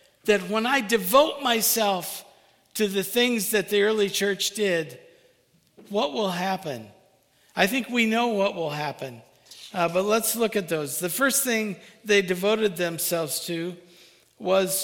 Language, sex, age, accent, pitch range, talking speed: English, male, 50-69, American, 175-205 Hz, 150 wpm